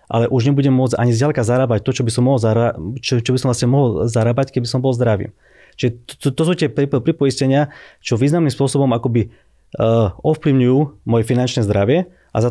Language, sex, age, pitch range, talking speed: Slovak, male, 30-49, 110-130 Hz, 185 wpm